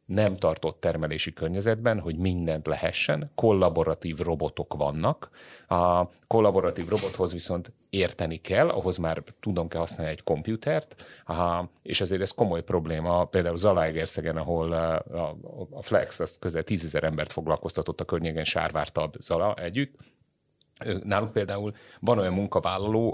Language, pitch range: Hungarian, 80-100 Hz